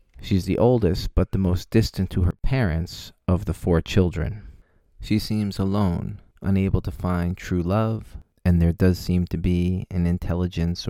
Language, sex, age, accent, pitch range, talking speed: English, male, 30-49, American, 85-100 Hz, 165 wpm